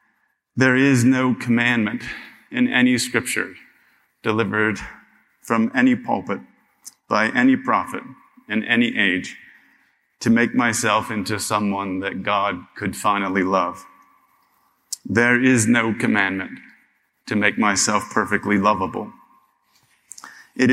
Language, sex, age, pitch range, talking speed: English, male, 30-49, 100-120 Hz, 105 wpm